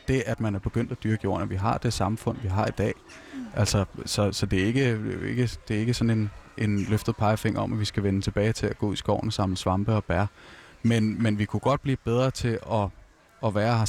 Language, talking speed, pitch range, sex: Danish, 250 wpm, 100-115 Hz, male